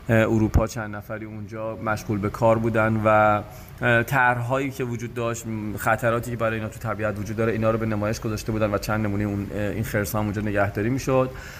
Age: 30-49